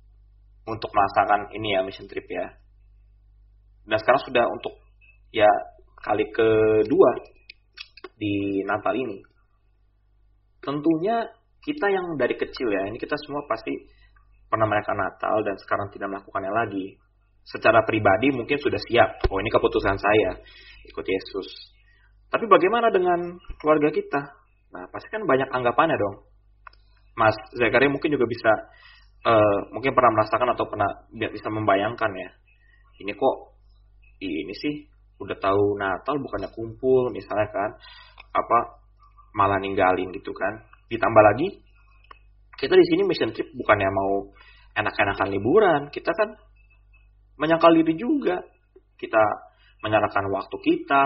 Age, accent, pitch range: 20-39, native, 100-160 Hz